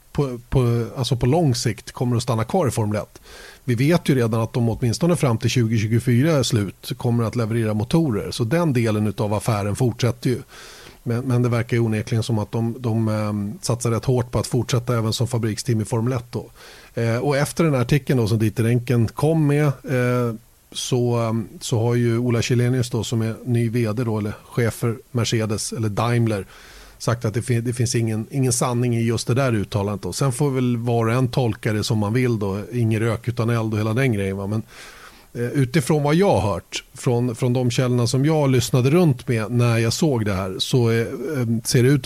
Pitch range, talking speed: 110-130 Hz, 205 wpm